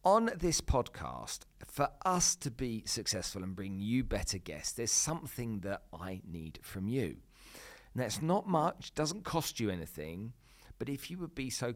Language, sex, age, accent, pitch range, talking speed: English, male, 40-59, British, 95-120 Hz, 170 wpm